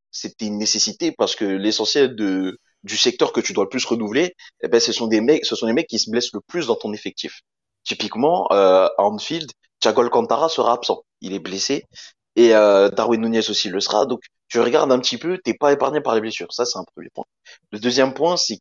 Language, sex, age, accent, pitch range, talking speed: French, male, 20-39, French, 105-130 Hz, 230 wpm